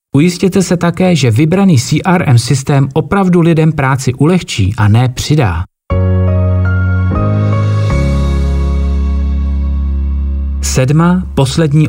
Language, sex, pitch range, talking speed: Czech, male, 105-165 Hz, 80 wpm